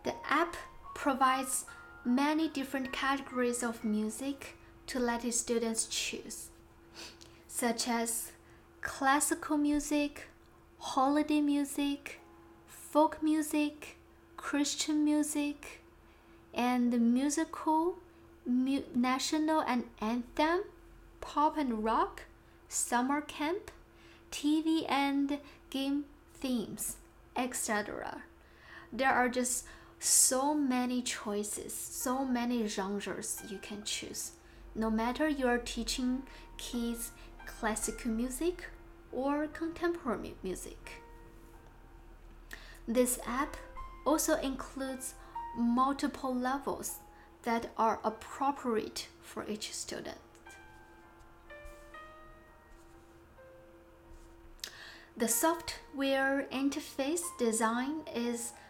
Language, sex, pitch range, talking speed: English, female, 240-300 Hz, 80 wpm